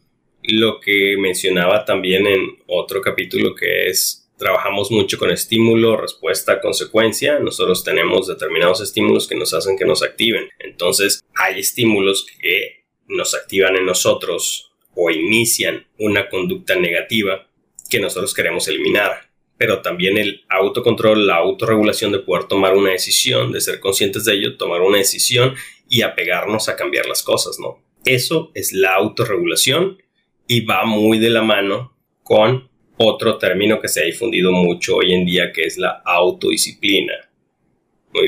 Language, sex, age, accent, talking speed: Spanish, male, 30-49, Mexican, 145 wpm